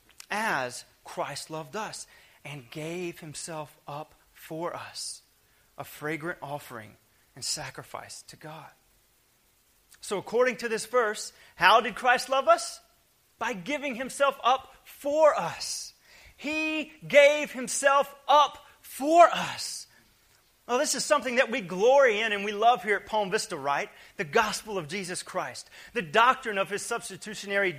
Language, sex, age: English, male, 30-49